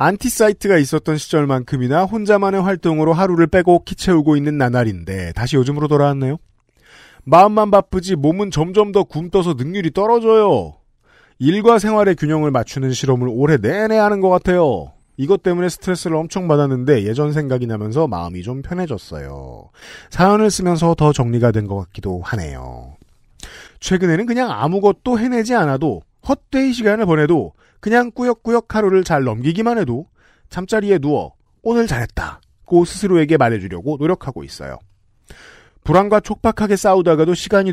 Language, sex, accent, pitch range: Korean, male, native, 140-200 Hz